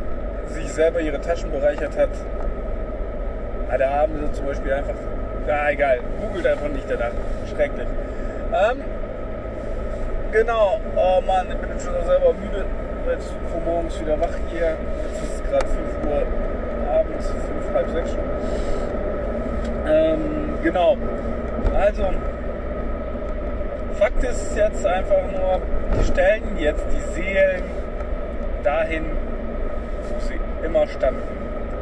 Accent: German